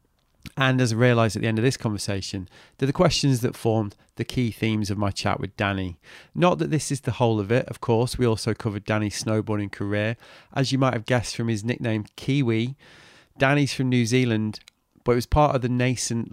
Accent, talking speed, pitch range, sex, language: British, 215 wpm, 105-125 Hz, male, English